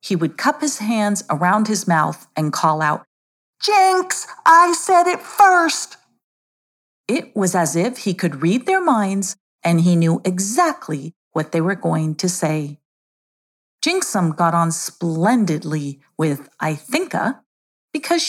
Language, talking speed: English, 140 wpm